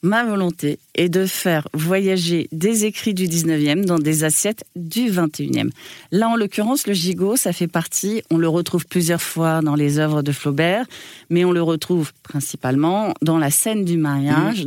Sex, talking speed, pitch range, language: female, 175 wpm, 160-200 Hz, French